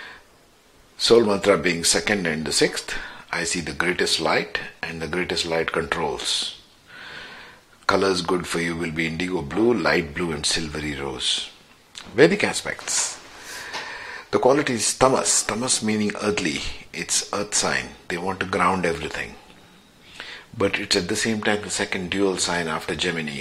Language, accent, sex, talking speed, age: English, Indian, male, 150 wpm, 50-69